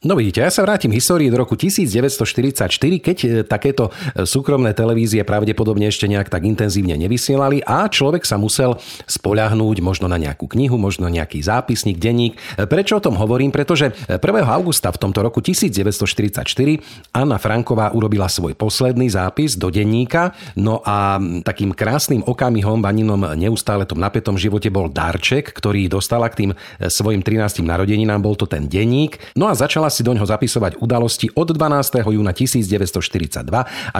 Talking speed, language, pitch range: 150 wpm, Slovak, 100-125 Hz